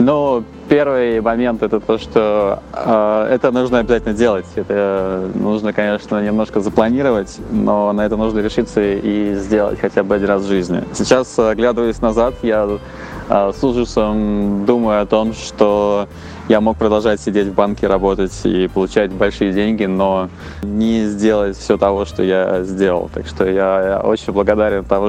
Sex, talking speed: male, 155 wpm